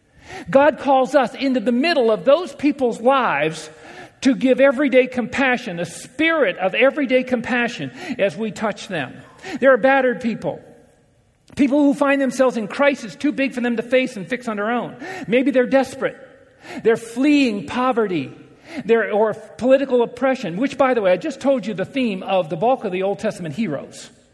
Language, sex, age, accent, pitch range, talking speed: English, male, 50-69, American, 200-270 Hz, 175 wpm